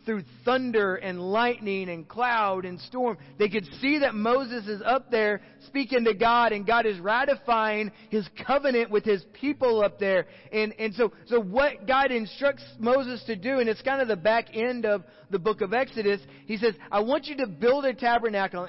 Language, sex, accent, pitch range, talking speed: English, male, American, 185-230 Hz, 195 wpm